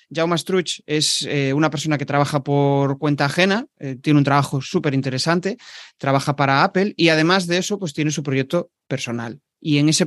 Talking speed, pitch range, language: 190 wpm, 135-160 Hz, Spanish